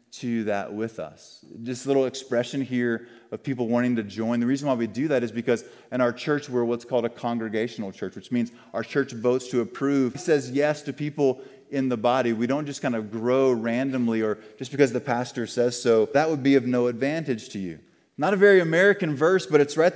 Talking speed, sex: 230 wpm, male